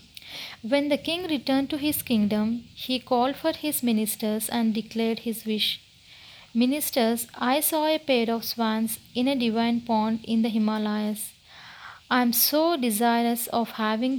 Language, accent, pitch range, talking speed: Telugu, native, 220-260 Hz, 150 wpm